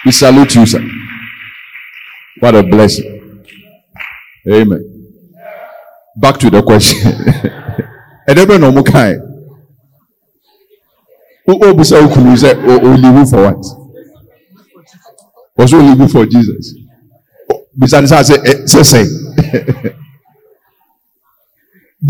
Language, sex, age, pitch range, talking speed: English, male, 50-69, 130-205 Hz, 85 wpm